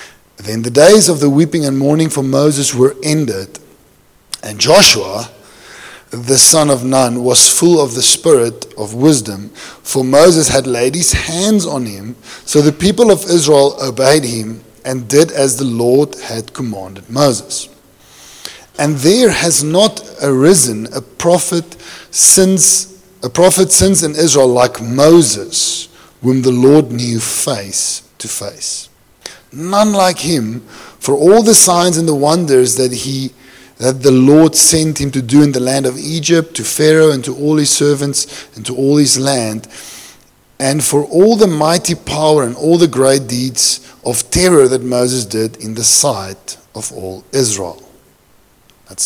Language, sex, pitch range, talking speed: English, male, 120-160 Hz, 160 wpm